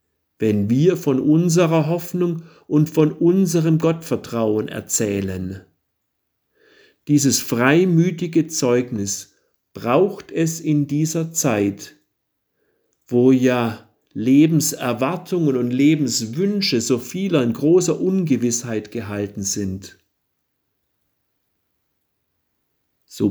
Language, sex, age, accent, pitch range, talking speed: German, male, 50-69, German, 115-155 Hz, 80 wpm